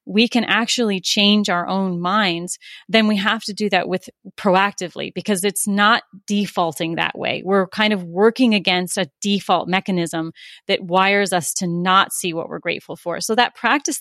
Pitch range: 185-235 Hz